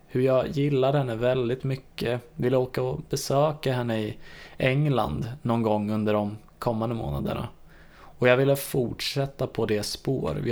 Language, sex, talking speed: Swedish, male, 150 wpm